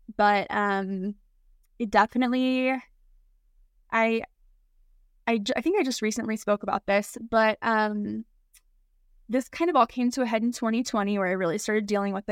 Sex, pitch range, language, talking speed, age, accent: female, 200-230 Hz, English, 155 wpm, 10-29, American